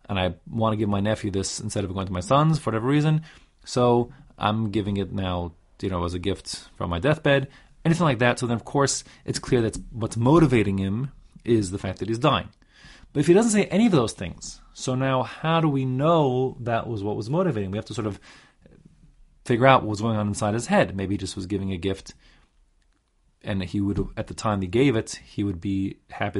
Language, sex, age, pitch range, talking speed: English, male, 30-49, 100-140 Hz, 235 wpm